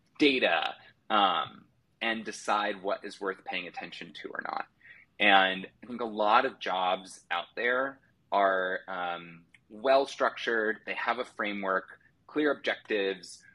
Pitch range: 95-115 Hz